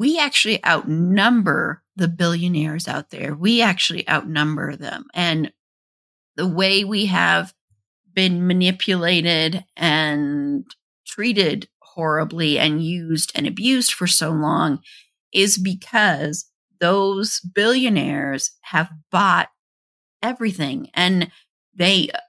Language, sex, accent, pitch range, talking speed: English, female, American, 160-200 Hz, 100 wpm